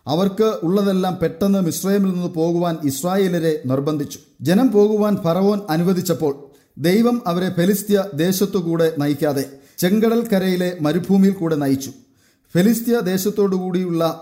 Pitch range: 160-200 Hz